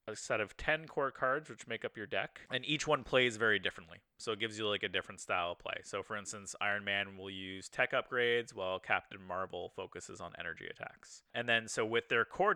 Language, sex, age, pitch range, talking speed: English, male, 30-49, 105-130 Hz, 235 wpm